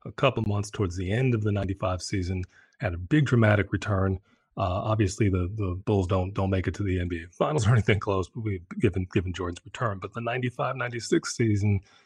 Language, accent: English, American